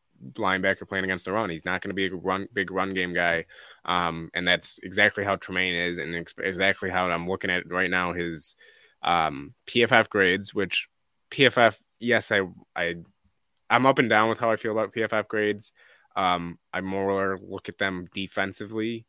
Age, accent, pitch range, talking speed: 20-39, American, 95-115 Hz, 180 wpm